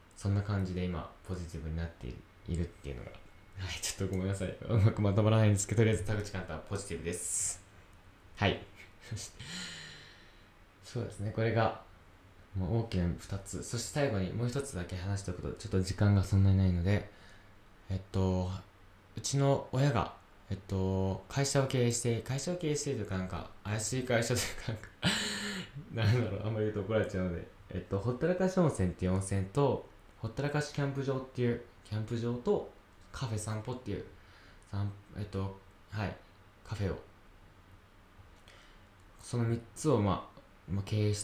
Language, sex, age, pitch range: Japanese, male, 20-39, 95-115 Hz